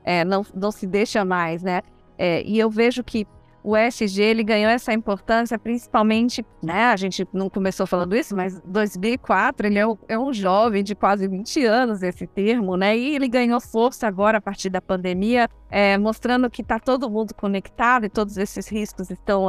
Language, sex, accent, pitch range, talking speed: Portuguese, female, Brazilian, 195-240 Hz, 190 wpm